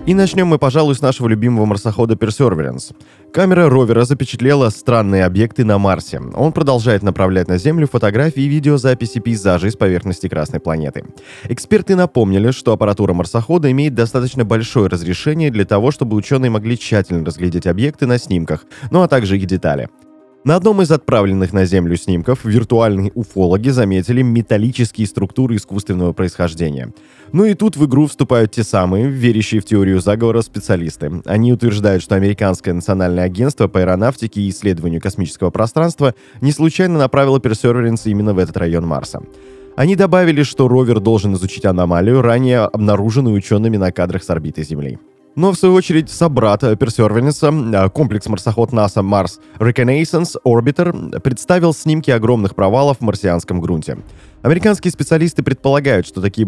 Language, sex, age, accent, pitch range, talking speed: Russian, male, 20-39, native, 95-135 Hz, 150 wpm